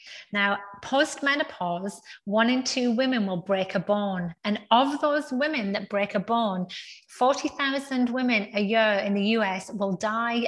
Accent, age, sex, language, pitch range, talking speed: British, 30-49, female, English, 195-240 Hz, 160 wpm